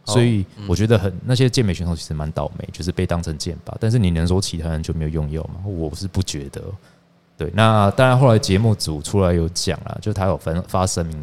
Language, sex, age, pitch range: Chinese, male, 20-39, 85-110 Hz